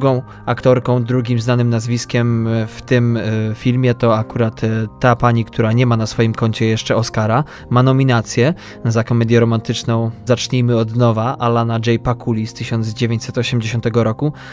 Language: Polish